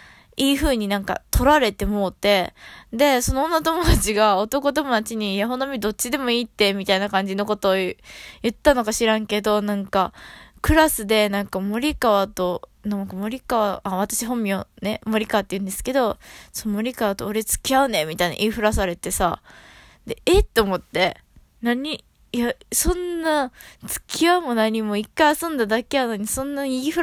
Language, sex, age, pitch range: Japanese, female, 20-39, 205-275 Hz